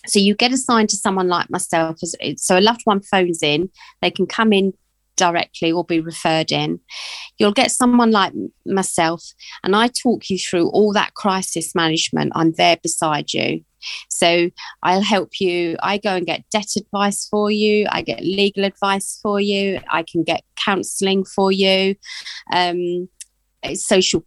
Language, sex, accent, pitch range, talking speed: English, female, British, 175-205 Hz, 165 wpm